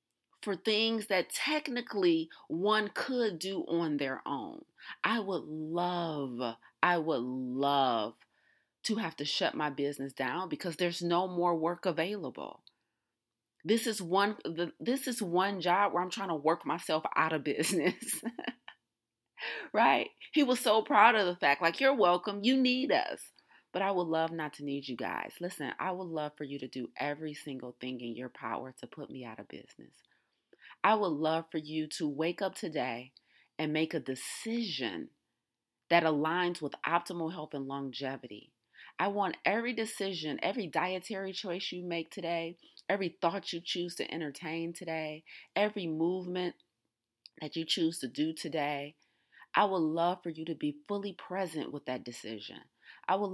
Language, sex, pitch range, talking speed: English, female, 150-190 Hz, 165 wpm